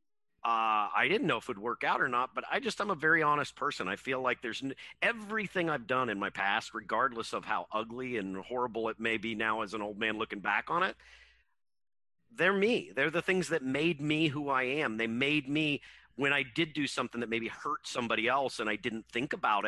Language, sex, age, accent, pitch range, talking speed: English, male, 50-69, American, 115-155 Hz, 230 wpm